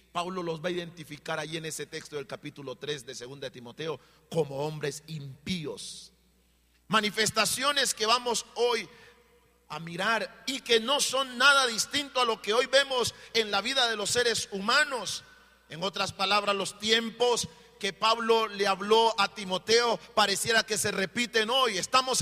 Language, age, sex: Spanish, 40-59, male